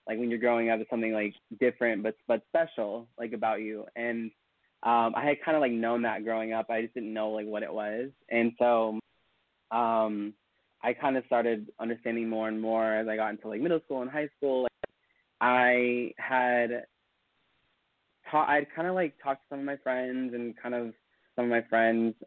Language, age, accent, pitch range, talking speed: English, 20-39, American, 105-120 Hz, 200 wpm